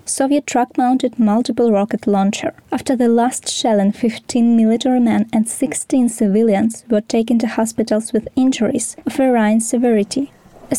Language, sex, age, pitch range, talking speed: Ukrainian, female, 20-39, 205-255 Hz, 140 wpm